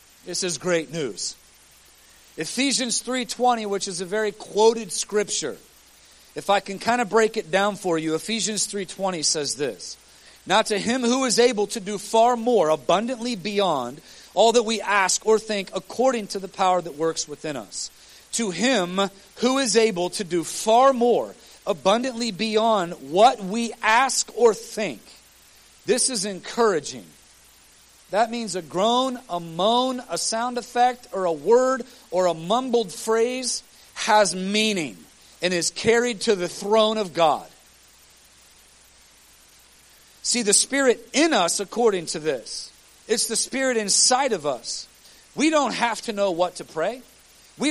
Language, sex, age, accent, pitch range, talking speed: English, male, 40-59, American, 185-235 Hz, 150 wpm